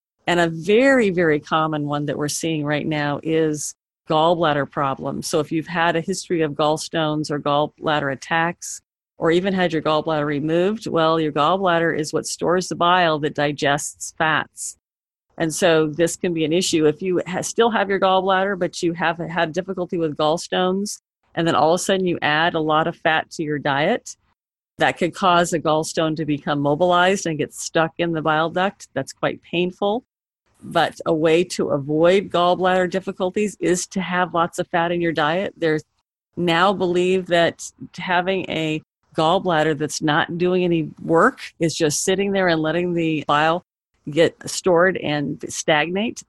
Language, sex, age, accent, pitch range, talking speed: English, female, 40-59, American, 155-180 Hz, 175 wpm